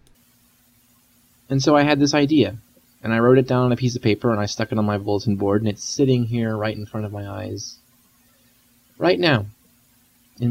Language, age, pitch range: English, 20-39, 110-120 Hz